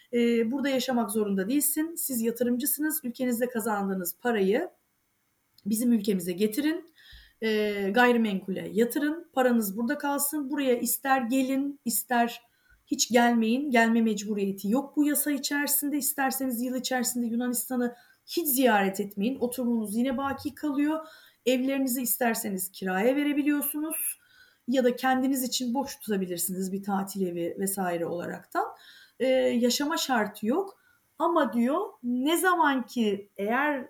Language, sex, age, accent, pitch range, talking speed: Turkish, female, 30-49, native, 220-300 Hz, 115 wpm